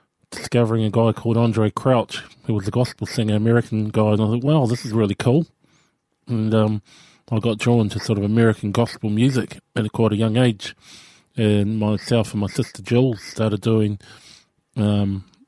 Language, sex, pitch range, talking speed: English, male, 105-120 Hz, 180 wpm